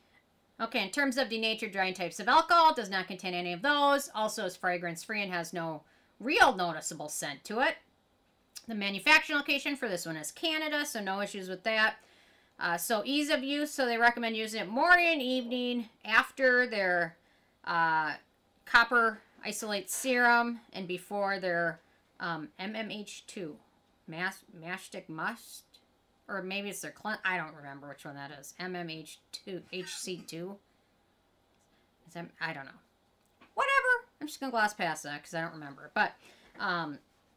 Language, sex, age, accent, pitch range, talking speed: English, female, 40-59, American, 175-235 Hz, 160 wpm